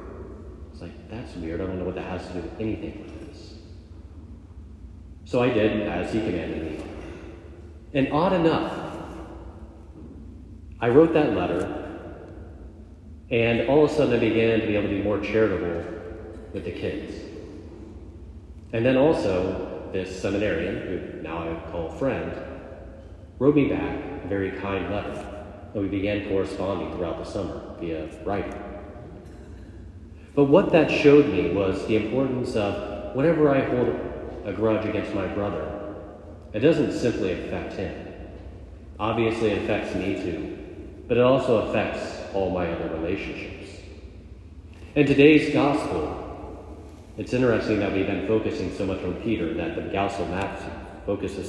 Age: 30-49